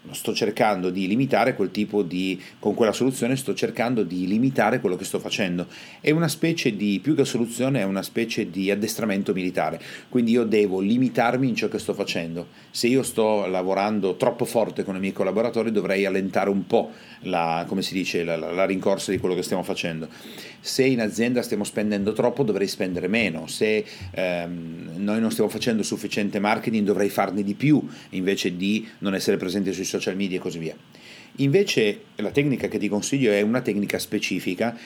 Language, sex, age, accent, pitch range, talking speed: Italian, male, 30-49, native, 95-115 Hz, 190 wpm